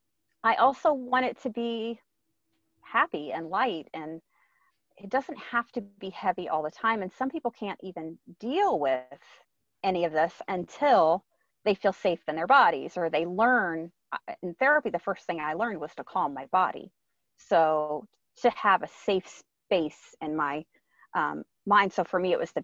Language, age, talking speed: English, 30-49, 180 wpm